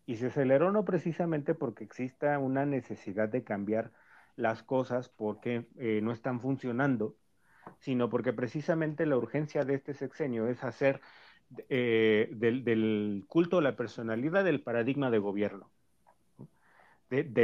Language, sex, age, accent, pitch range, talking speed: Spanish, male, 40-59, Mexican, 115-145 Hz, 140 wpm